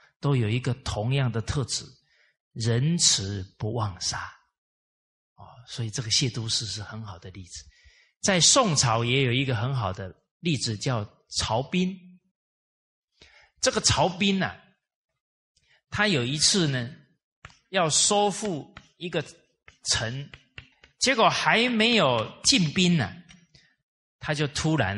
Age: 30-49